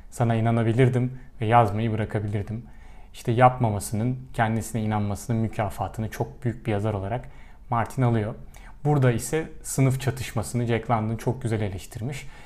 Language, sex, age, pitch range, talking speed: Turkish, male, 30-49, 110-130 Hz, 125 wpm